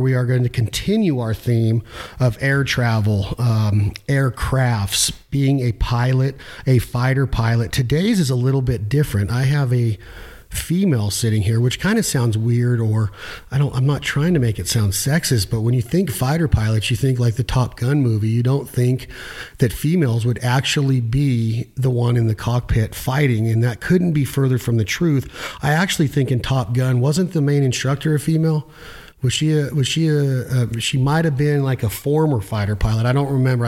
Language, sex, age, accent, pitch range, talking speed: English, male, 40-59, American, 115-145 Hz, 200 wpm